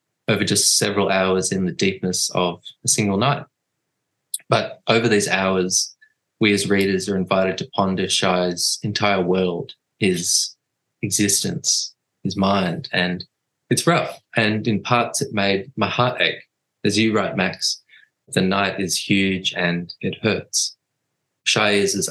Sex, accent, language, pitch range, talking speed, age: male, Australian, English, 95-110 Hz, 145 wpm, 20-39